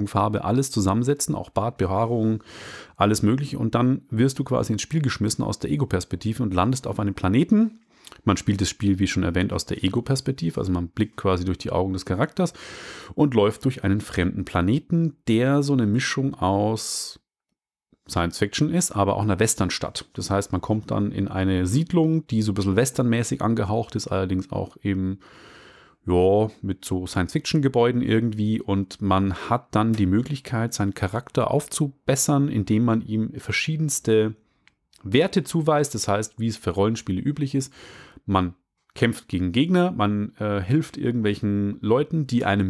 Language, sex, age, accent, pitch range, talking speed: German, male, 30-49, German, 100-135 Hz, 165 wpm